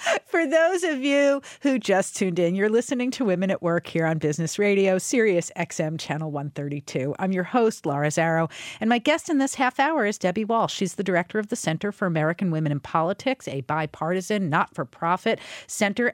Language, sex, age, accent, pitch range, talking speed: English, female, 50-69, American, 165-225 Hz, 195 wpm